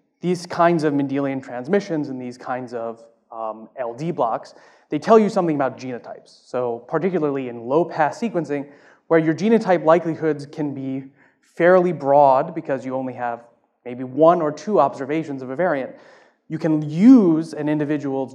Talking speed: 155 wpm